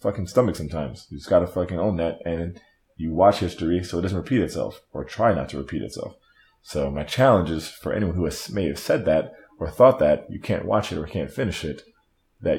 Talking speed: 235 wpm